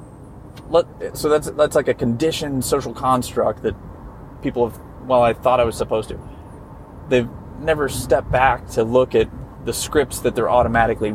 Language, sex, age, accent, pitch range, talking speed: English, male, 30-49, American, 110-130 Hz, 165 wpm